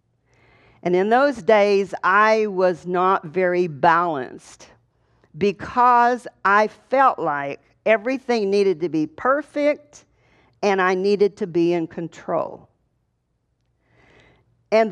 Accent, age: American, 50-69